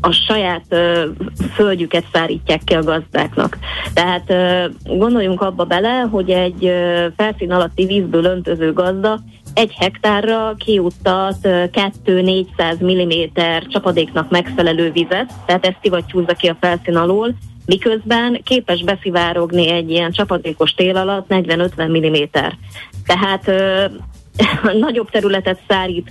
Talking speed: 120 wpm